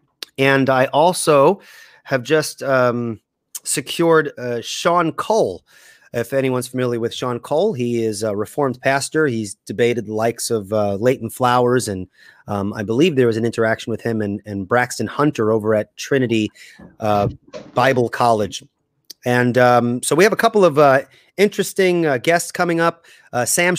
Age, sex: 30-49, male